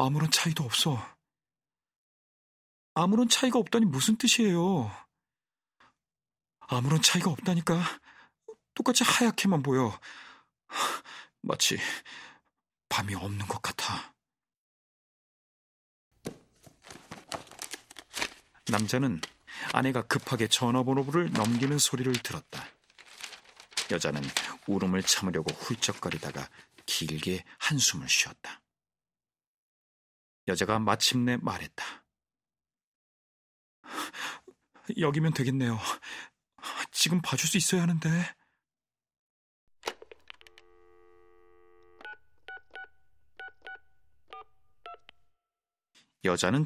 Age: 40-59